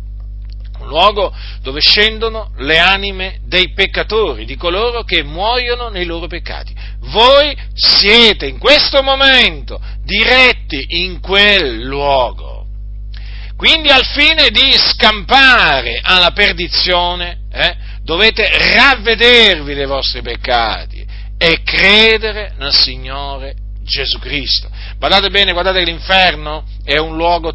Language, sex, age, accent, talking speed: Italian, male, 50-69, native, 110 wpm